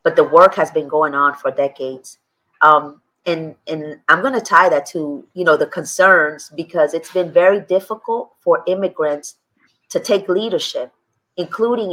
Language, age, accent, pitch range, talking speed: English, 30-49, American, 155-195 Hz, 160 wpm